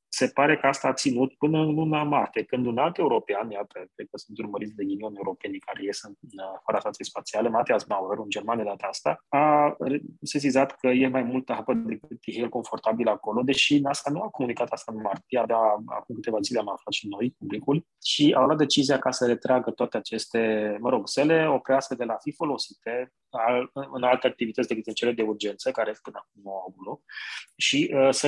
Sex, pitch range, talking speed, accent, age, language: male, 110-145 Hz, 205 wpm, native, 20-39, Romanian